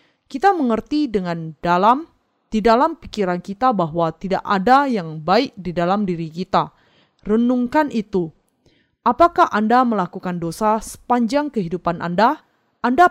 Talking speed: 125 wpm